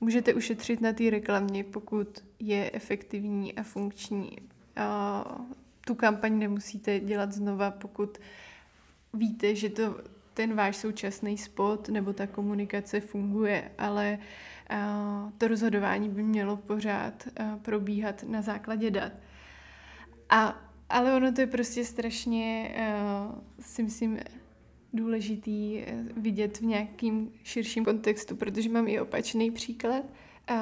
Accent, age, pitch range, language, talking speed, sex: native, 20-39, 205-225 Hz, Czech, 110 wpm, female